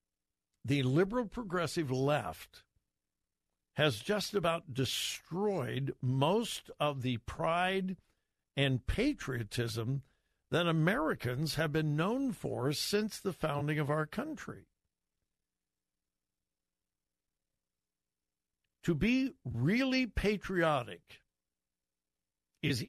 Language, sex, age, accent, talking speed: English, male, 60-79, American, 80 wpm